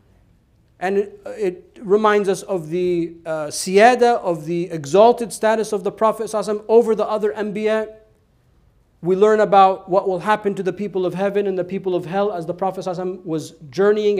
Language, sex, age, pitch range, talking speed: English, male, 40-59, 180-210 Hz, 170 wpm